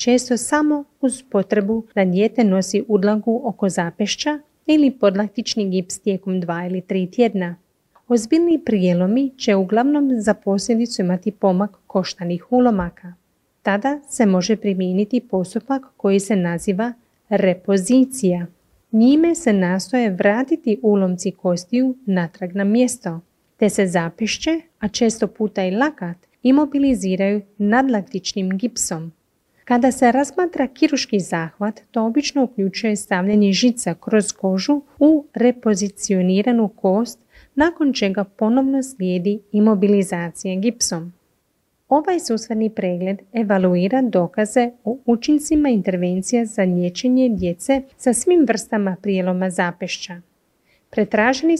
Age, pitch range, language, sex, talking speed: 30-49, 190-250 Hz, Croatian, female, 110 wpm